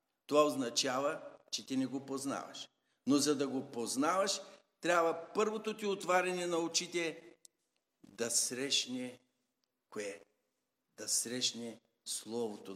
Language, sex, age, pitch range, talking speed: Bulgarian, male, 60-79, 125-180 Hz, 115 wpm